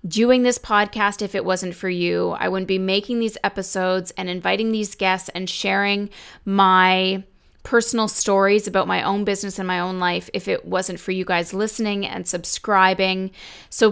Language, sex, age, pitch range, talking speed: English, female, 20-39, 185-215 Hz, 175 wpm